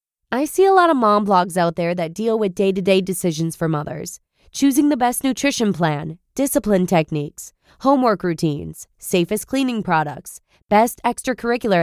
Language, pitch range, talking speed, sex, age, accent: English, 185-245 Hz, 150 wpm, female, 20-39, American